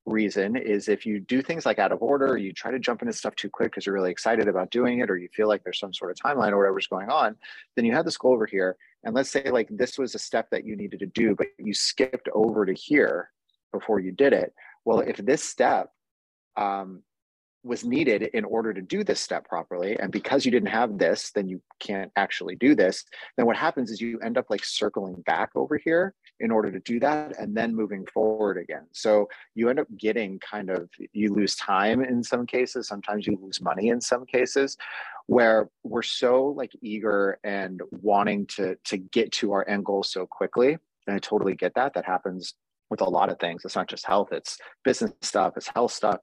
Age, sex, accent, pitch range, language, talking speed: 30-49, male, American, 100-120 Hz, English, 225 wpm